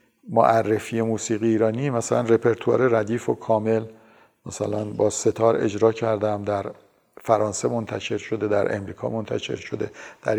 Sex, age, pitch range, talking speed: male, 50-69, 110-125 Hz, 125 wpm